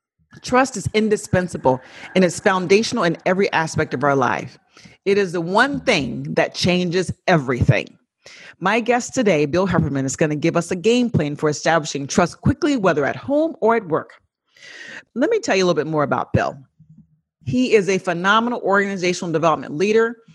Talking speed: 175 wpm